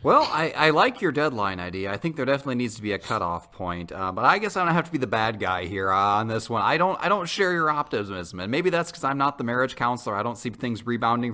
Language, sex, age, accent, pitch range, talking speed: English, male, 30-49, American, 105-140 Hz, 290 wpm